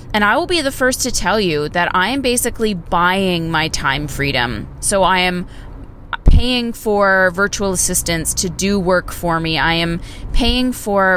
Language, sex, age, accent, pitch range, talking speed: English, female, 20-39, American, 170-215 Hz, 175 wpm